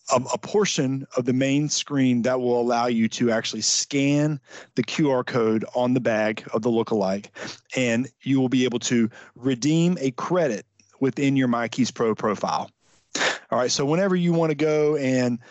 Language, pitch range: English, 120-150 Hz